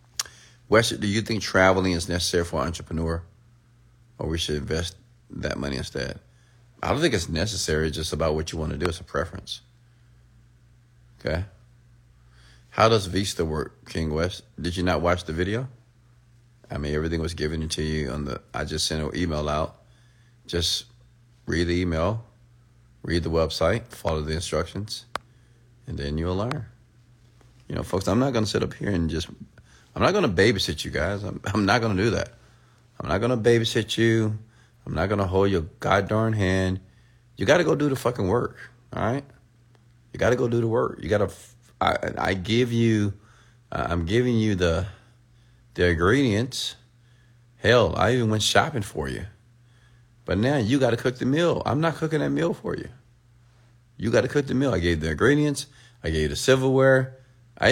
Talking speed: 190 wpm